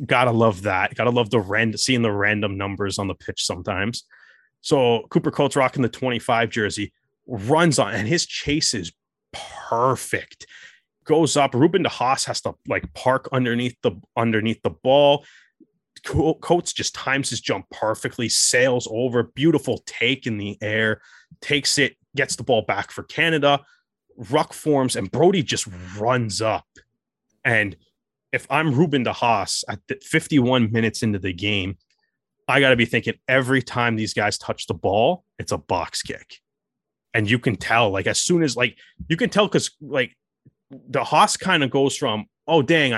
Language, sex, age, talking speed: English, male, 30-49, 170 wpm